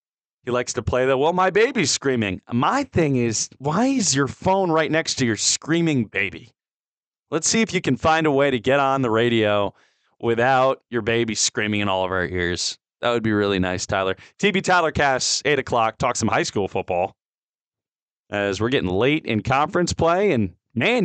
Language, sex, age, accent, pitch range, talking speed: English, male, 30-49, American, 110-160 Hz, 195 wpm